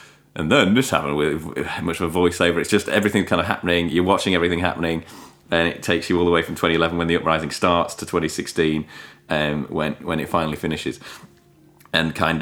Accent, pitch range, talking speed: British, 80-95 Hz, 205 wpm